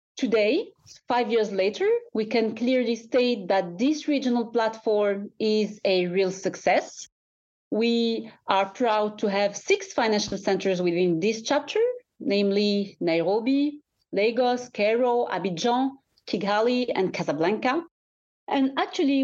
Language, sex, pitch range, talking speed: English, female, 195-255 Hz, 115 wpm